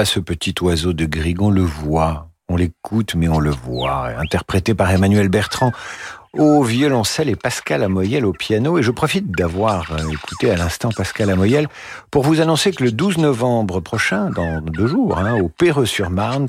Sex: male